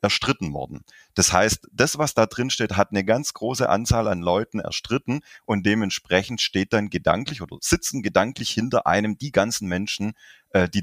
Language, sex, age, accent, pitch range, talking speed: German, male, 30-49, German, 90-115 Hz, 170 wpm